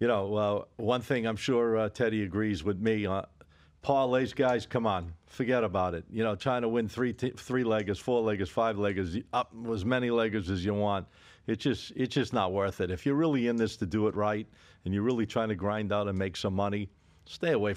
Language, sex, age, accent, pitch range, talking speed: English, male, 50-69, American, 100-130 Hz, 220 wpm